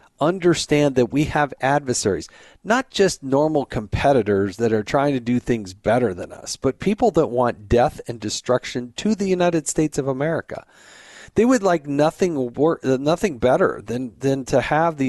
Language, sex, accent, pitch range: English, male, American, 120-160 Hz